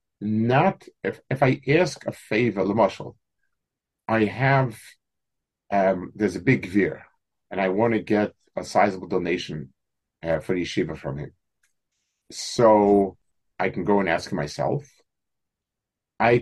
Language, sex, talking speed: English, male, 130 wpm